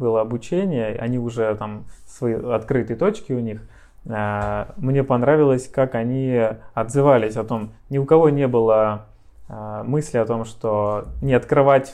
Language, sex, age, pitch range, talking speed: Russian, male, 20-39, 110-135 Hz, 140 wpm